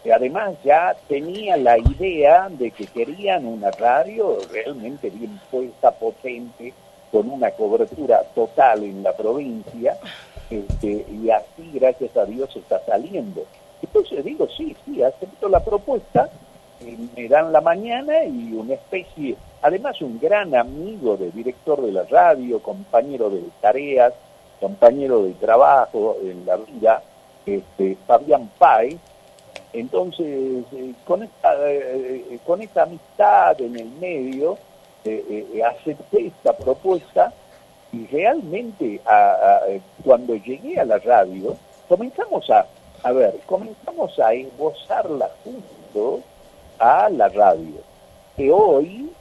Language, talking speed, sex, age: Spanish, 130 wpm, male, 50-69